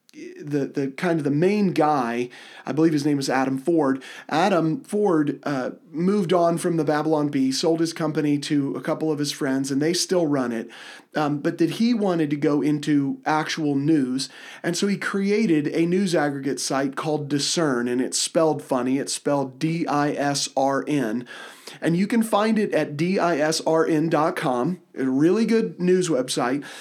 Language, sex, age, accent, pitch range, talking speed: English, male, 30-49, American, 145-195 Hz, 170 wpm